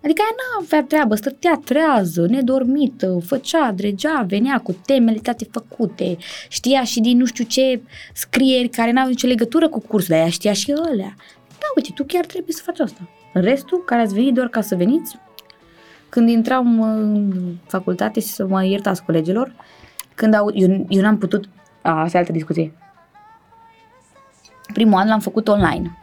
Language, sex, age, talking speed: Romanian, female, 20-39, 170 wpm